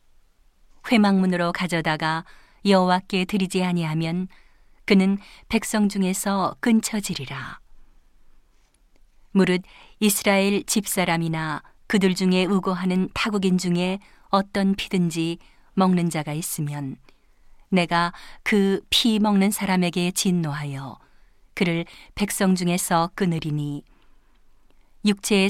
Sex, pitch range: female, 170-200 Hz